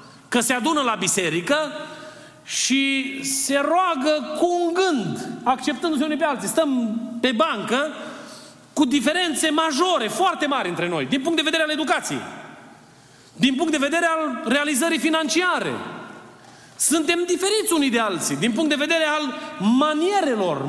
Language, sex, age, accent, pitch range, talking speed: Romanian, male, 30-49, native, 210-305 Hz, 140 wpm